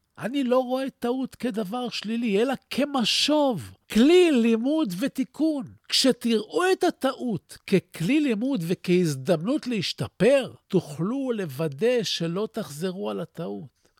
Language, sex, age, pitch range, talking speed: Hebrew, male, 50-69, 170-255 Hz, 105 wpm